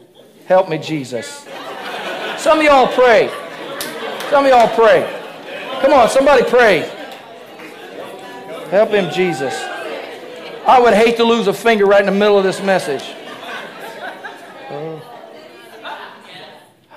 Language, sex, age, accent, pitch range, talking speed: English, male, 50-69, American, 190-255 Hz, 115 wpm